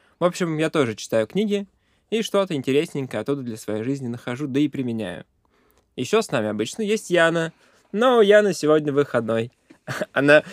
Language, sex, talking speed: Russian, male, 160 wpm